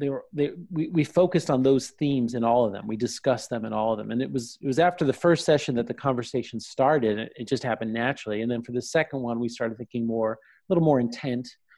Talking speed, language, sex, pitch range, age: 265 wpm, English, male, 115-145 Hz, 30-49